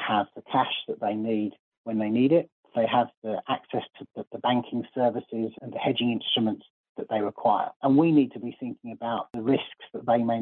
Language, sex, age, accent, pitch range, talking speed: English, male, 40-59, British, 130-160 Hz, 220 wpm